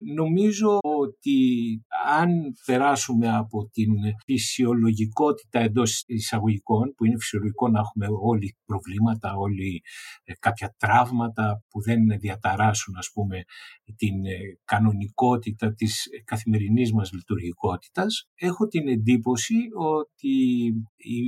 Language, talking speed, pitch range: Greek, 100 wpm, 110-135 Hz